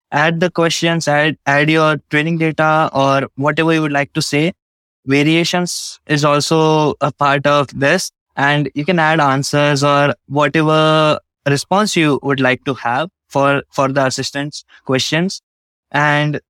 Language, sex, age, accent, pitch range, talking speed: English, male, 20-39, Indian, 135-160 Hz, 150 wpm